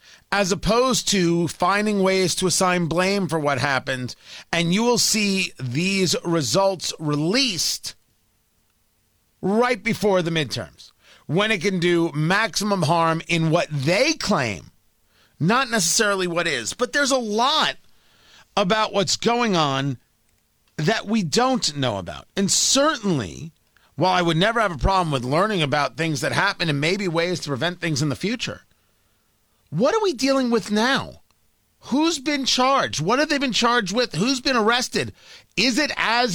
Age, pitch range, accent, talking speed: 40-59, 155-215 Hz, American, 155 wpm